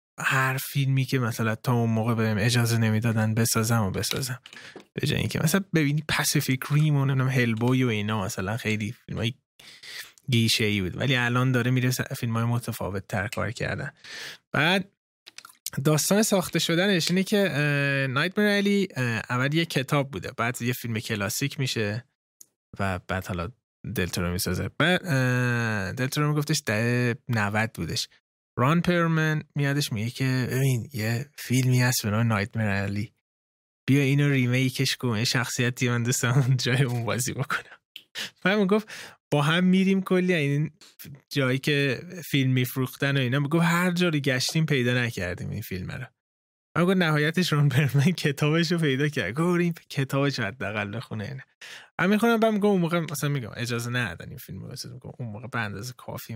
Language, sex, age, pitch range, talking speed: Persian, male, 20-39, 115-150 Hz, 155 wpm